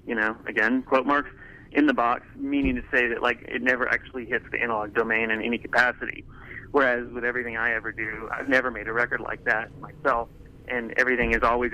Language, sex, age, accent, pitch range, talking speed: English, male, 30-49, American, 115-135 Hz, 210 wpm